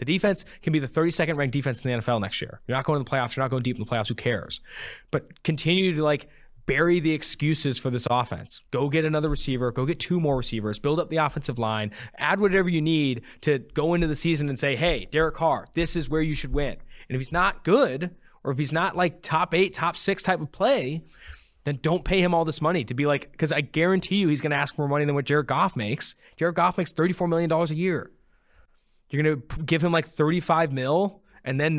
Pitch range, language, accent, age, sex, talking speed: 120-160 Hz, English, American, 20-39, male, 245 wpm